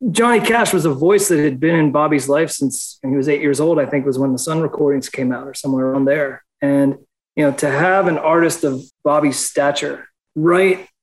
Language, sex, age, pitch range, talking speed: English, male, 30-49, 140-160 Hz, 230 wpm